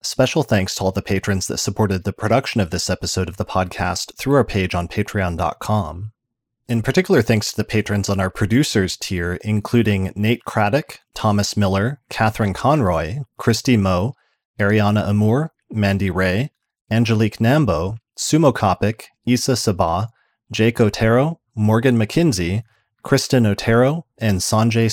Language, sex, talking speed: English, male, 140 wpm